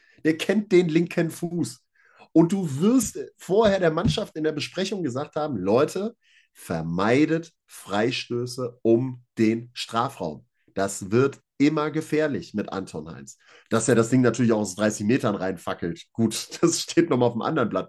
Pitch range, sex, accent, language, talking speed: 110-145 Hz, male, German, German, 160 wpm